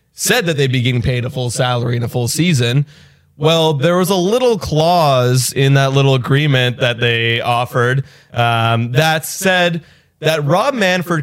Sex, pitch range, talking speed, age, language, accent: male, 125-155 Hz, 170 wpm, 20-39, English, American